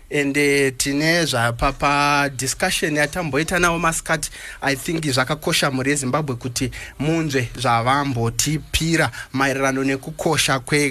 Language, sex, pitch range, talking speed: English, male, 130-160 Hz, 120 wpm